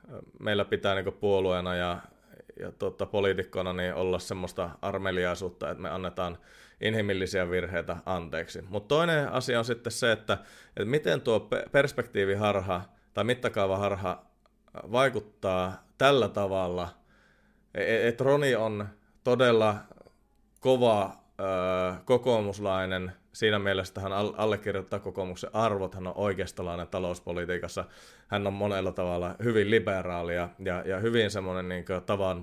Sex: male